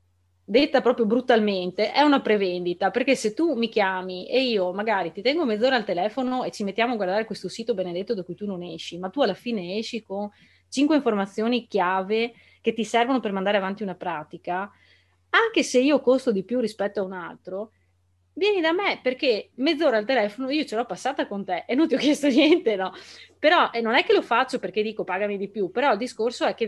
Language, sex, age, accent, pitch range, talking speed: Italian, female, 30-49, native, 185-245 Hz, 215 wpm